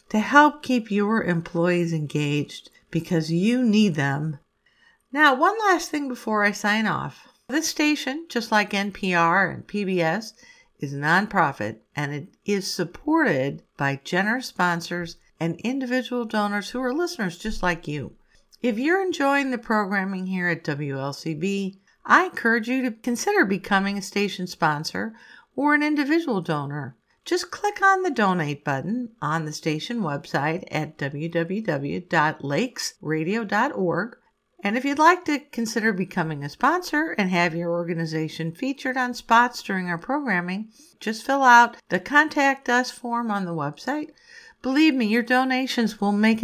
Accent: American